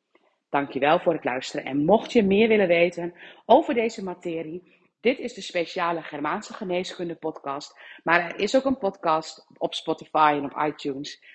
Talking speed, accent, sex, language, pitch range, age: 165 wpm, Dutch, female, Dutch, 150-185 Hz, 40-59